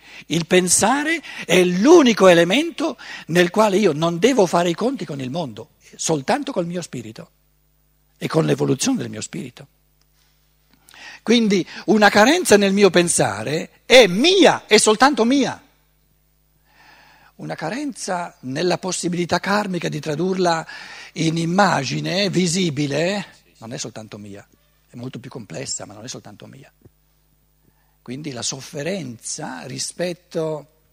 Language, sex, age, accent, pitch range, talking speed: Italian, male, 60-79, native, 130-195 Hz, 125 wpm